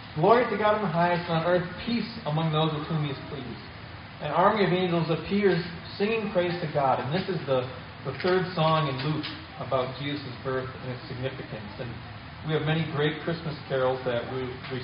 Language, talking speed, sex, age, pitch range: English, 200 wpm, male, 30-49, 130-170 Hz